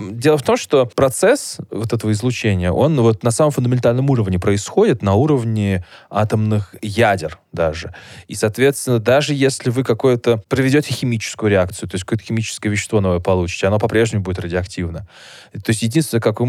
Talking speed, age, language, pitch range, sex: 165 wpm, 20-39, Russian, 100-120 Hz, male